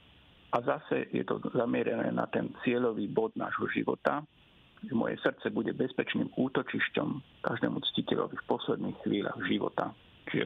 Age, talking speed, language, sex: 50-69, 140 wpm, Slovak, male